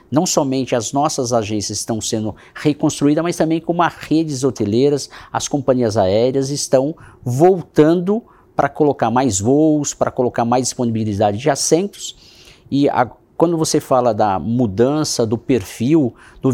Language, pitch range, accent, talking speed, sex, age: Portuguese, 115-140 Hz, Brazilian, 140 wpm, male, 50-69